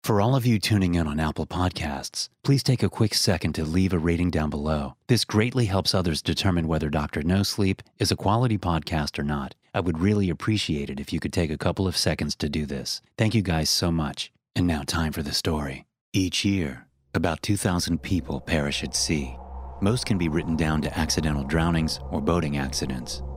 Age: 30-49